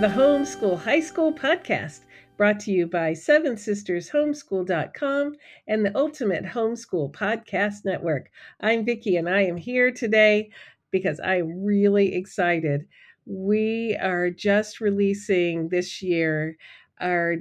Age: 50-69